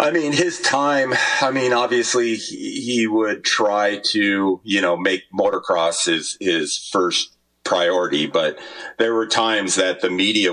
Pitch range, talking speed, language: 90-140 Hz, 155 wpm, English